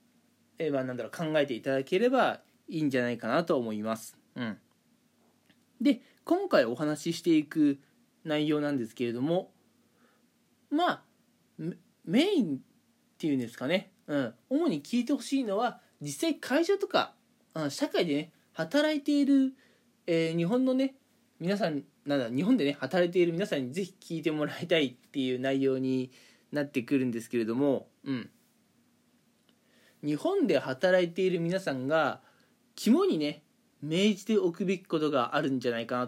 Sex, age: male, 20-39